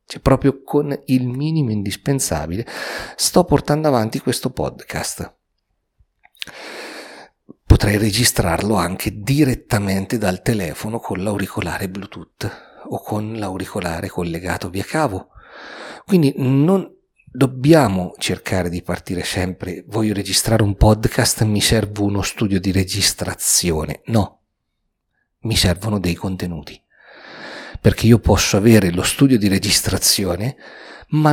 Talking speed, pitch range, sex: 110 wpm, 95-135 Hz, male